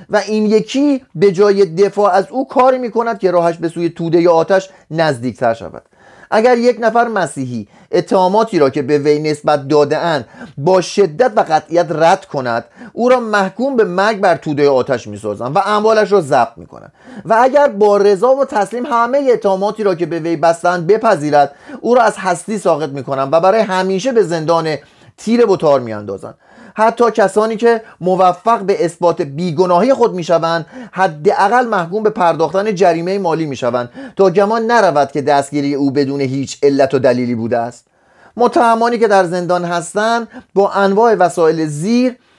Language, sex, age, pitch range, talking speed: Persian, male, 30-49, 155-220 Hz, 170 wpm